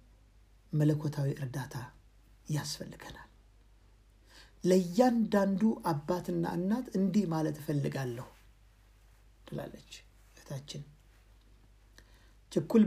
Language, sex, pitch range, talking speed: Amharic, male, 130-215 Hz, 55 wpm